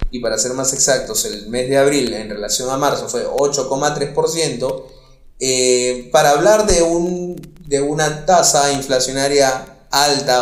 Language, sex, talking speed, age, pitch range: Spanish, male, 130 wpm, 20-39, 130-155 Hz